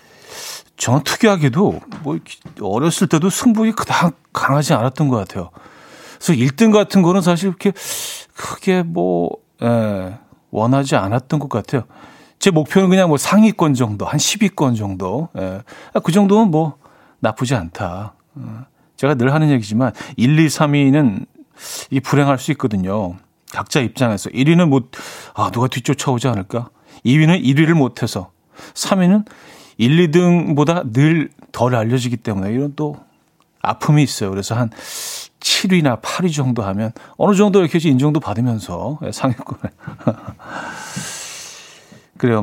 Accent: native